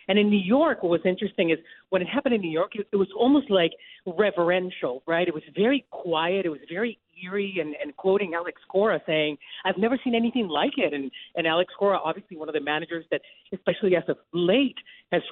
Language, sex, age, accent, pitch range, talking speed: English, female, 40-59, American, 170-230 Hz, 215 wpm